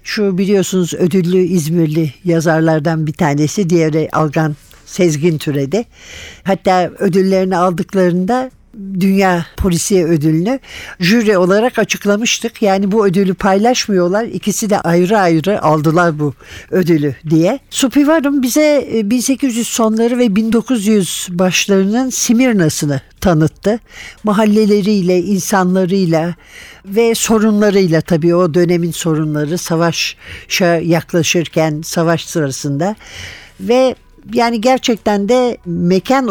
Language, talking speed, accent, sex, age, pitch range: Turkish, 95 wpm, native, male, 60-79, 170-220 Hz